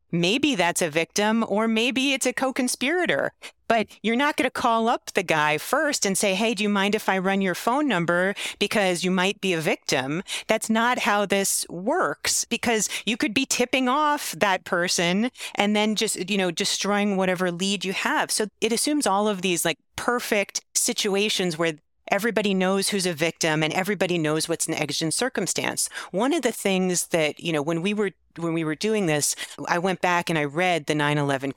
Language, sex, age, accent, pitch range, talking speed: English, female, 40-59, American, 170-225 Hz, 200 wpm